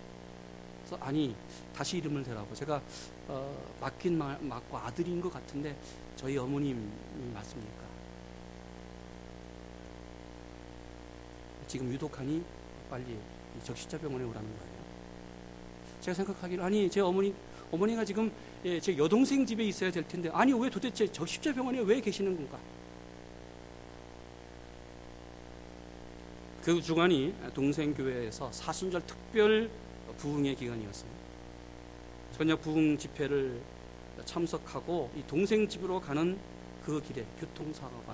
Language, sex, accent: Korean, male, native